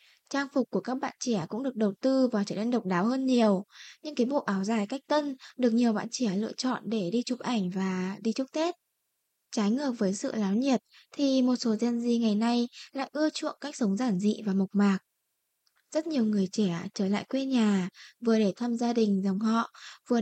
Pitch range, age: 210-260 Hz, 10-29